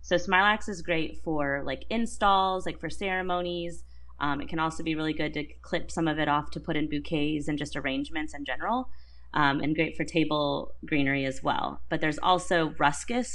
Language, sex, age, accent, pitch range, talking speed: English, female, 30-49, American, 145-175 Hz, 200 wpm